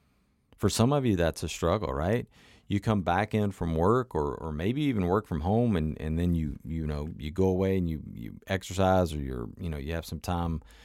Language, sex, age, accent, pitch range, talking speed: English, male, 40-59, American, 80-105 Hz, 230 wpm